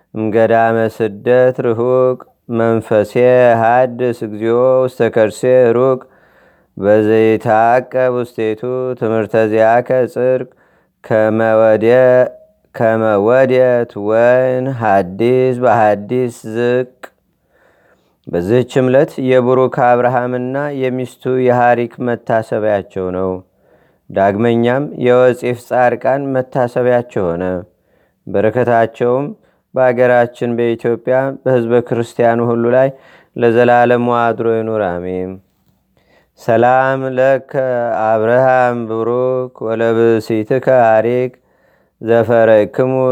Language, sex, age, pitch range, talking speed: Amharic, male, 30-49, 115-130 Hz, 70 wpm